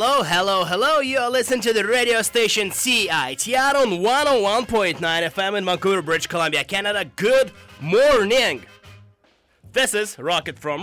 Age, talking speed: 20-39, 160 wpm